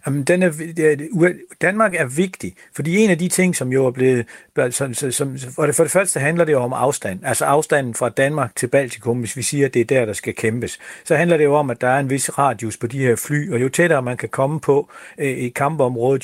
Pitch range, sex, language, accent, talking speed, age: 125-155 Hz, male, Danish, native, 240 wpm, 60-79